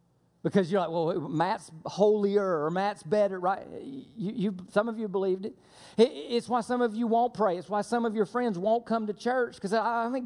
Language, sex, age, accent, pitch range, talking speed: English, male, 40-59, American, 180-230 Hz, 215 wpm